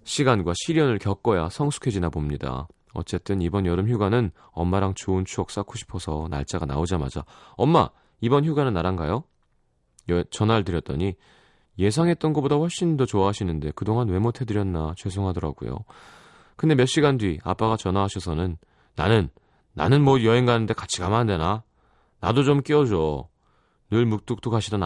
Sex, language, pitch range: male, Korean, 90-130 Hz